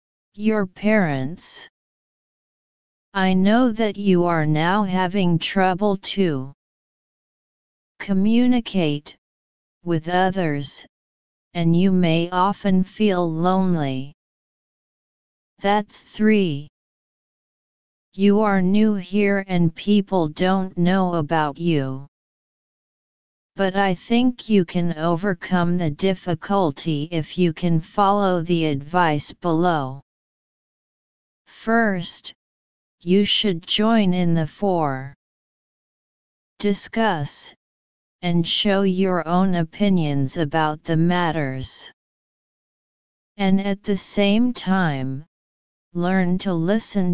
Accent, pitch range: American, 155-195 Hz